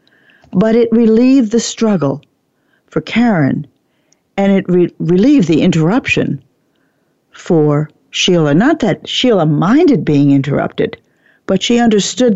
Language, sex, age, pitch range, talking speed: English, female, 60-79, 155-195 Hz, 110 wpm